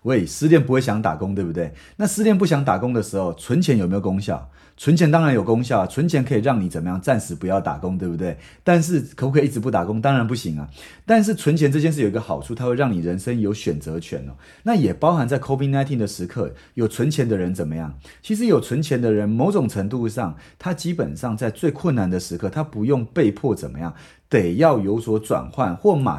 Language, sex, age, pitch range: Chinese, male, 30-49, 95-155 Hz